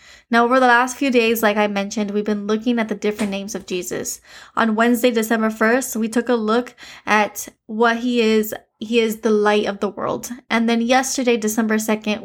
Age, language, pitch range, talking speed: 10-29, English, 205-230 Hz, 205 wpm